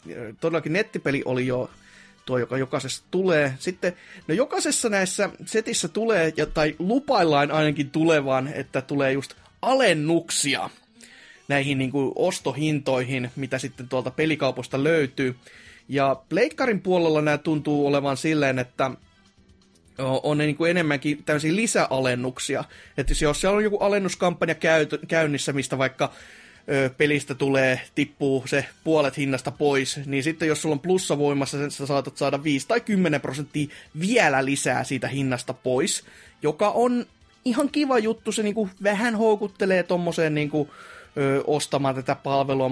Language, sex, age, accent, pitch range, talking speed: Finnish, male, 30-49, native, 135-185 Hz, 130 wpm